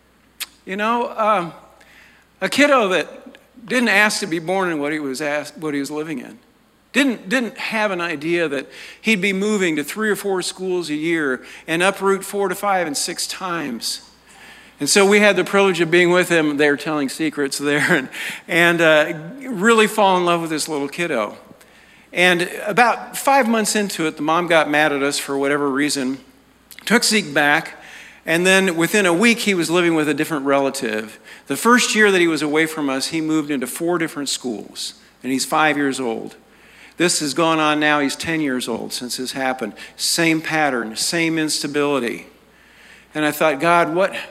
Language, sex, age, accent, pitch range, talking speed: English, male, 50-69, American, 145-200 Hz, 190 wpm